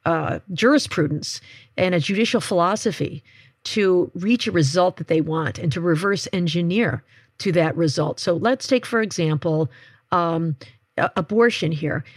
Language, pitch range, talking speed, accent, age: English, 155-210 Hz, 140 wpm, American, 50-69